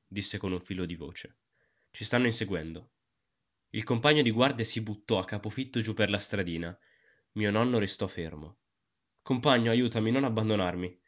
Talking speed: 155 wpm